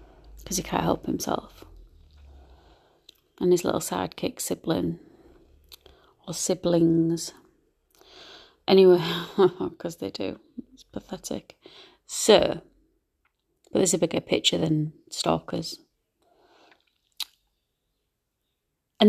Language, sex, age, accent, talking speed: English, female, 30-49, British, 85 wpm